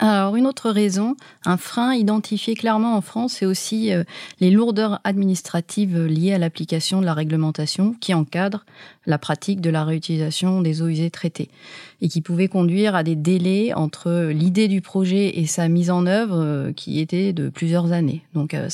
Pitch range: 165-205 Hz